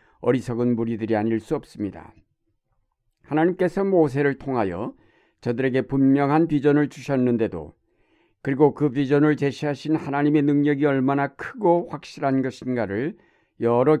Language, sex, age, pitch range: Korean, male, 60-79, 120-150 Hz